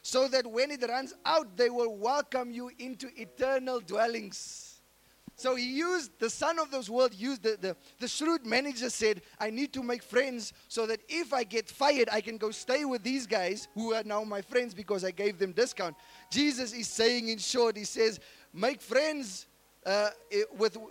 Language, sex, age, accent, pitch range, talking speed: English, male, 20-39, South African, 215-275 Hz, 190 wpm